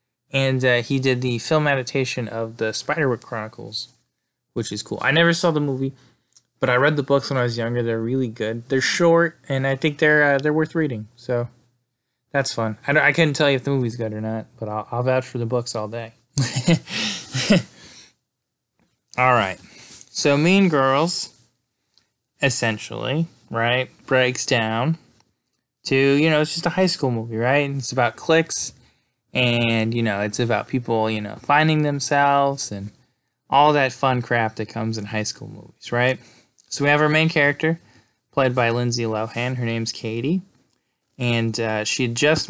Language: English